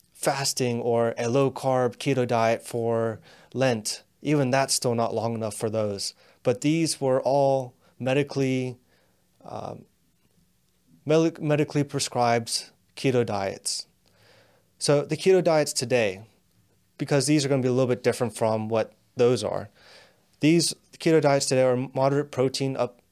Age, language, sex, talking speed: 20-39, English, male, 140 wpm